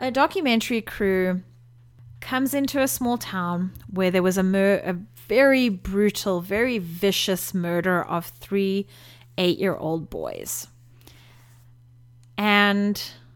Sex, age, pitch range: female, 30-49, 120-195 Hz